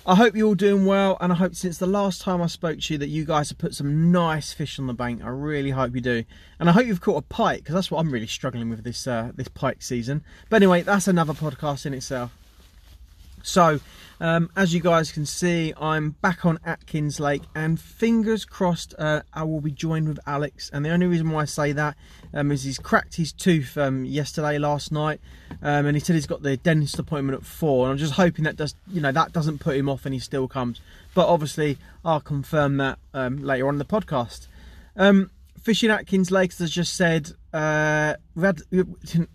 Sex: male